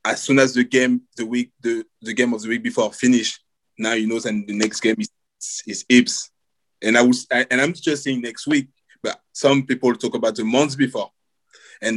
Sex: male